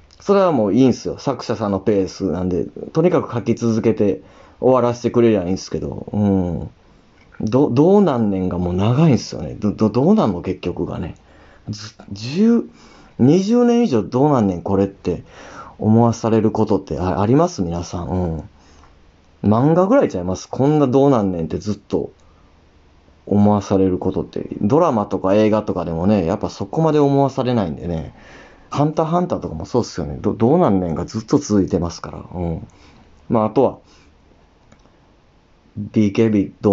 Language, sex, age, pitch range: Japanese, male, 30-49, 90-115 Hz